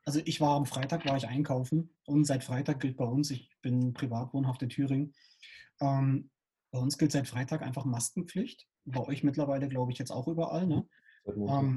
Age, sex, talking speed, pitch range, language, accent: 30-49, male, 190 wpm, 140-175 Hz, German, German